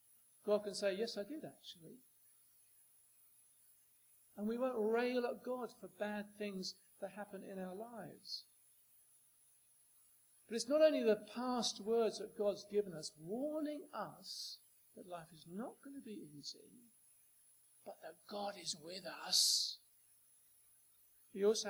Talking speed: 140 wpm